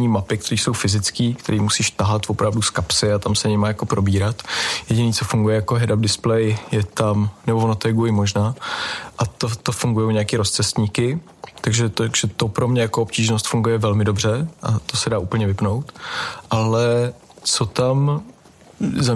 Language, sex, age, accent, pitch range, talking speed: Czech, male, 20-39, native, 105-120 Hz, 175 wpm